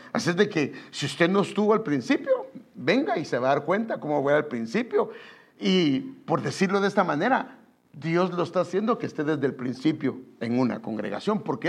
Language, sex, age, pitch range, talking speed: English, male, 50-69, 135-215 Hz, 200 wpm